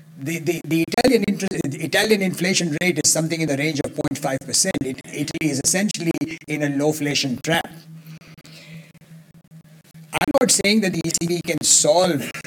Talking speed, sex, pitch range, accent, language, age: 155 wpm, male, 140-165 Hz, Indian, English, 60-79